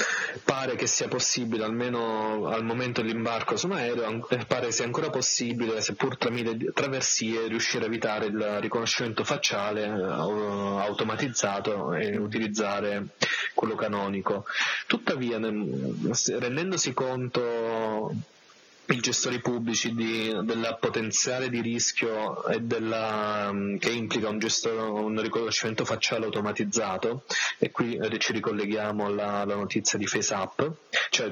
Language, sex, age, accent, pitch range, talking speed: Italian, male, 20-39, native, 105-120 Hz, 115 wpm